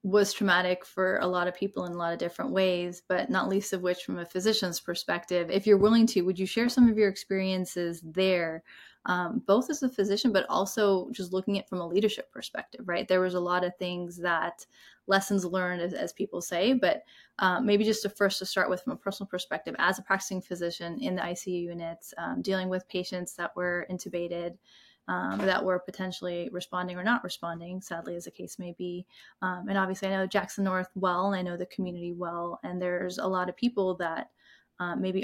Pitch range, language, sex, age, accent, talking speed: 175-195 Hz, English, female, 20-39, American, 215 wpm